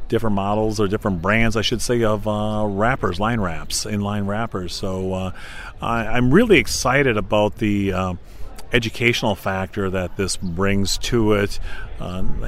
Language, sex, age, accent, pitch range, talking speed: English, male, 40-59, American, 100-125 Hz, 155 wpm